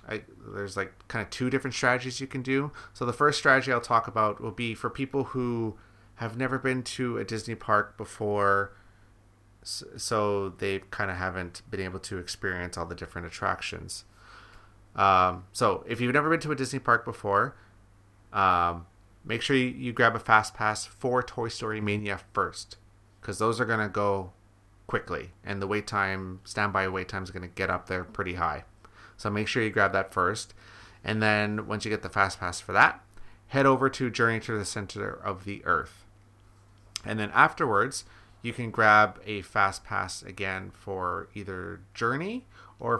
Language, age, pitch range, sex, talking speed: English, 30-49, 100-115 Hz, male, 180 wpm